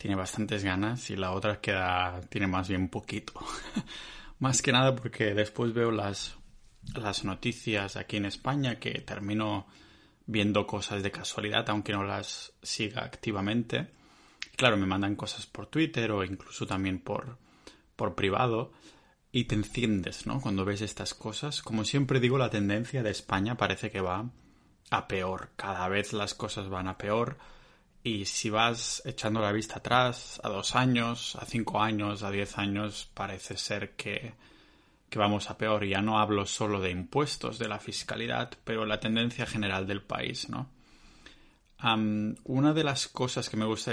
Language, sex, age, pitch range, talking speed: Spanish, male, 20-39, 100-120 Hz, 165 wpm